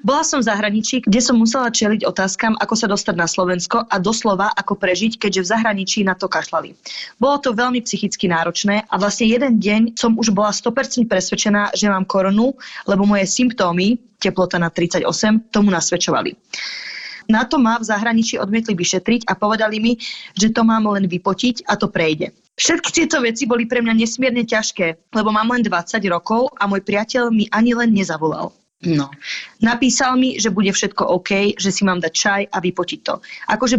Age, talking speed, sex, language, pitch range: 20-39, 185 wpm, female, Slovak, 185-230 Hz